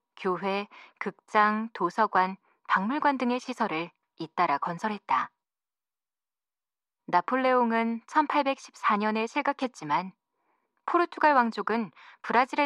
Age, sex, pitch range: 20-39, female, 190-260 Hz